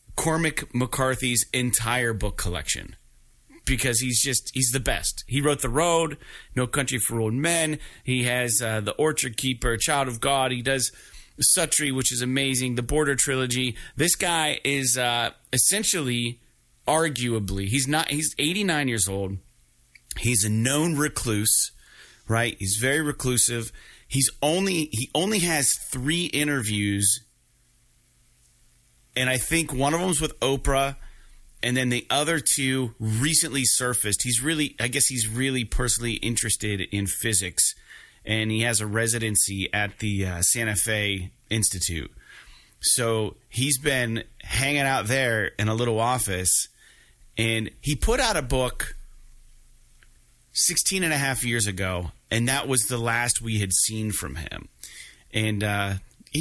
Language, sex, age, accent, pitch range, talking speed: English, male, 30-49, American, 110-140 Hz, 145 wpm